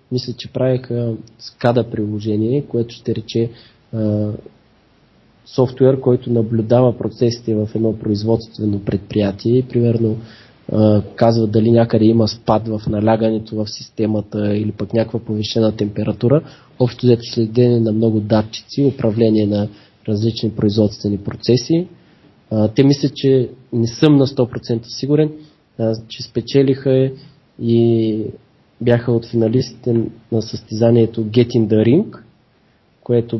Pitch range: 110-125 Hz